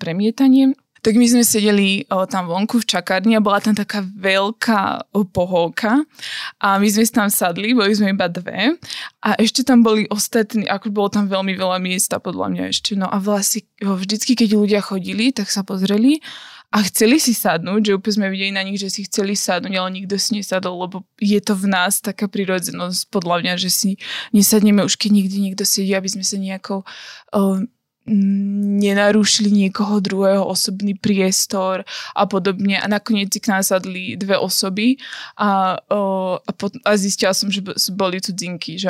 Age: 20-39